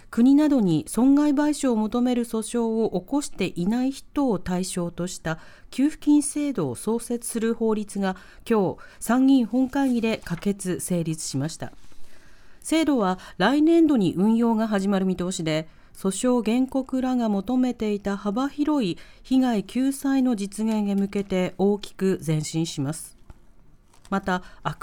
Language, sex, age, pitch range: Japanese, female, 40-59, 185-255 Hz